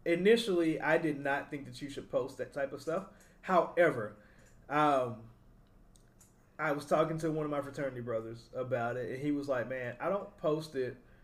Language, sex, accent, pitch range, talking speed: English, male, American, 130-155 Hz, 185 wpm